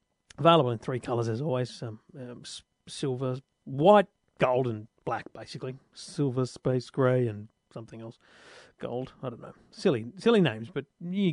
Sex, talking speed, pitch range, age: male, 160 wpm, 130-175 Hz, 40-59